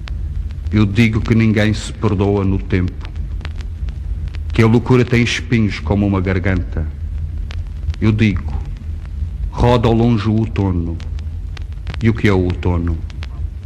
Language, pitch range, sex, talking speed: Portuguese, 80-105 Hz, male, 125 wpm